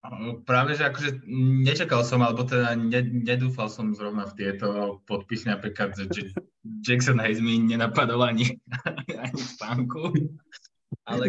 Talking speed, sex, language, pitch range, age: 115 wpm, male, Slovak, 95-115 Hz, 20-39